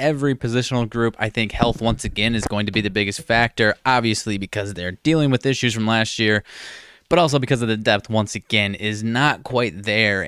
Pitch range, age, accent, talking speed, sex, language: 100-120 Hz, 20-39, American, 210 wpm, male, English